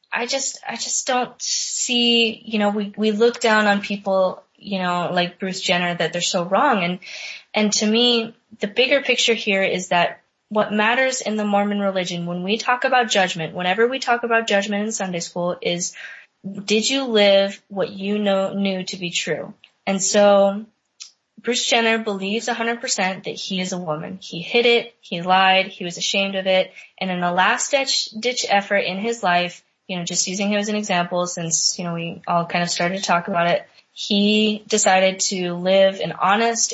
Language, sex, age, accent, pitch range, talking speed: English, female, 10-29, American, 180-220 Hz, 200 wpm